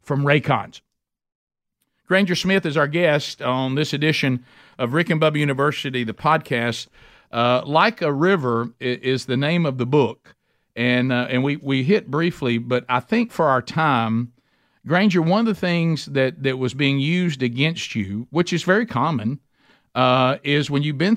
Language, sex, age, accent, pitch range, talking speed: English, male, 50-69, American, 120-150 Hz, 175 wpm